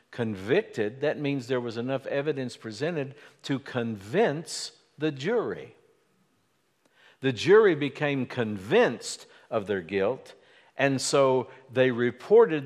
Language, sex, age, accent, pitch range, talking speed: English, male, 60-79, American, 120-150 Hz, 110 wpm